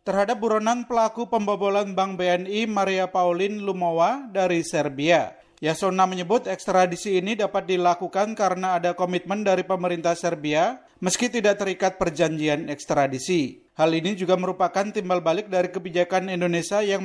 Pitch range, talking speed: 175-210 Hz, 135 wpm